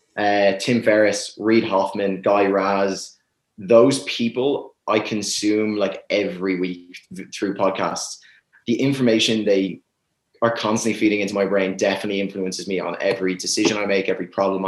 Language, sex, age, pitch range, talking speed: English, male, 20-39, 95-115 Hz, 145 wpm